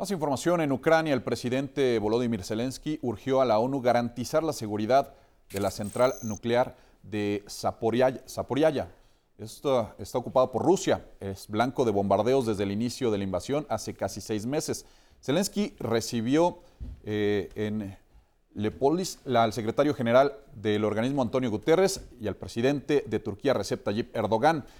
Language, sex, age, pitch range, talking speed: Spanish, male, 40-59, 105-140 Hz, 145 wpm